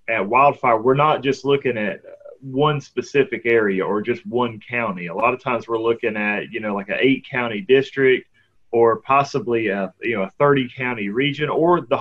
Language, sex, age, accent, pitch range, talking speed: English, male, 30-49, American, 115-145 Hz, 190 wpm